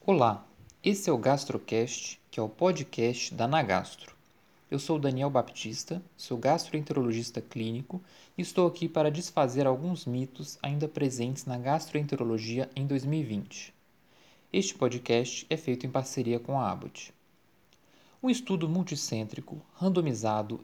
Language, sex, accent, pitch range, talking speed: Portuguese, male, Brazilian, 125-165 Hz, 130 wpm